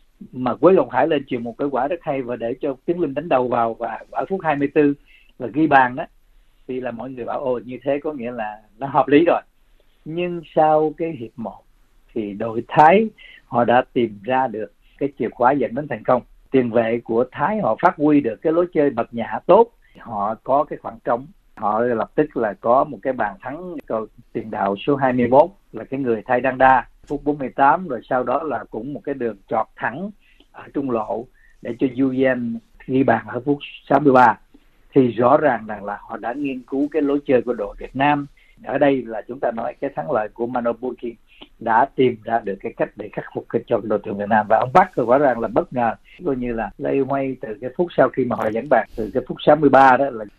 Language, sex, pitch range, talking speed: Vietnamese, male, 115-145 Hz, 230 wpm